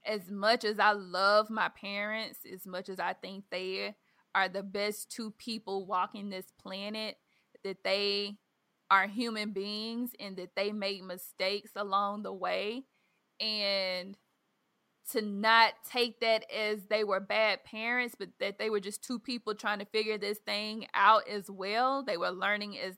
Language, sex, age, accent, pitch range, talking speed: English, female, 20-39, American, 195-230 Hz, 165 wpm